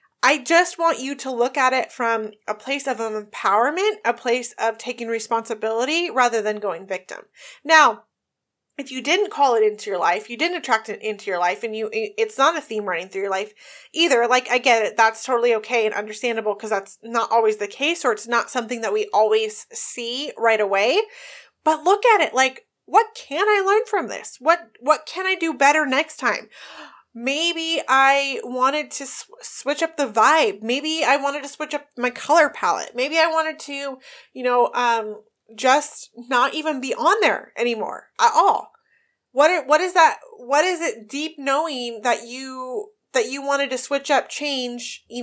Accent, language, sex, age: American, English, female, 30-49